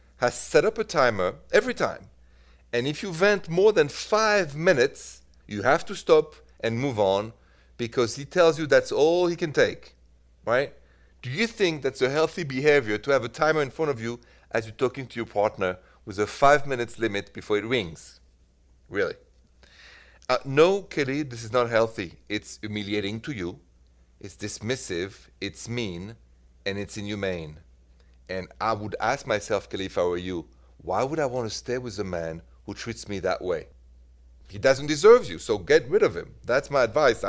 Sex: male